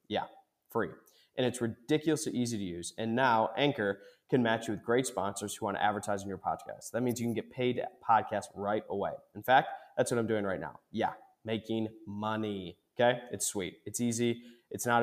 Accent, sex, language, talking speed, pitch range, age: American, male, English, 210 wpm, 105-125 Hz, 20-39